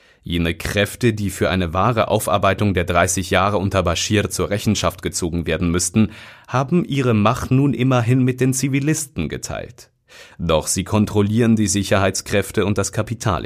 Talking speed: 150 wpm